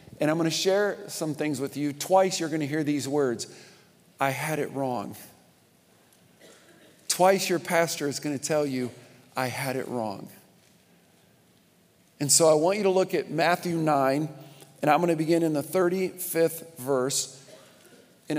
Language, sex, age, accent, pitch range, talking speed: English, male, 50-69, American, 150-185 Hz, 170 wpm